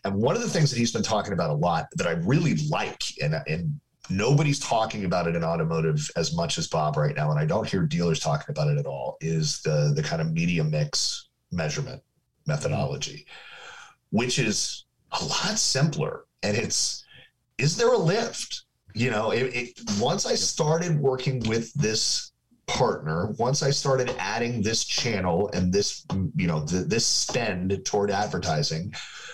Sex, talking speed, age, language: male, 175 wpm, 40-59, English